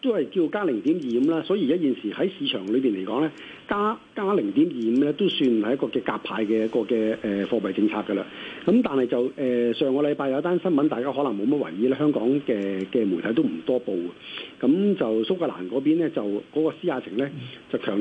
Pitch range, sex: 115-155 Hz, male